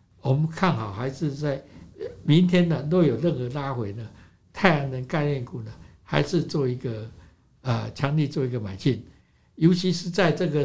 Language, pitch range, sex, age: Chinese, 125-175 Hz, male, 60-79